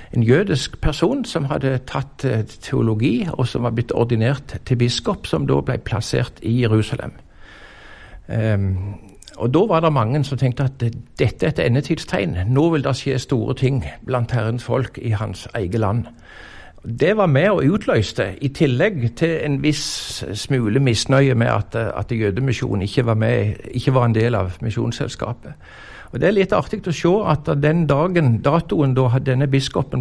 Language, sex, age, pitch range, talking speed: English, male, 60-79, 115-140 Hz, 165 wpm